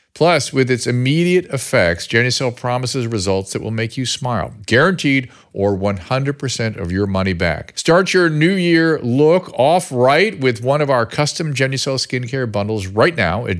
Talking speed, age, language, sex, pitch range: 170 wpm, 50-69, English, male, 95-125 Hz